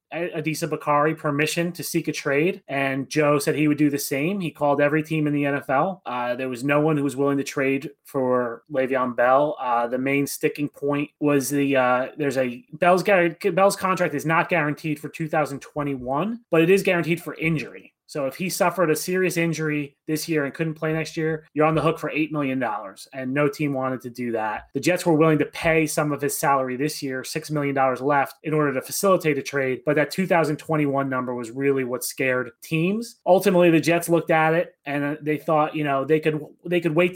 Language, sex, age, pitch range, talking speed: English, male, 30-49, 140-165 Hz, 220 wpm